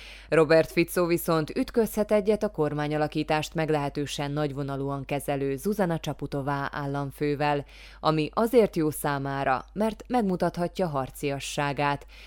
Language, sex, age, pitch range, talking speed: Hungarian, female, 20-39, 140-175 Hz, 100 wpm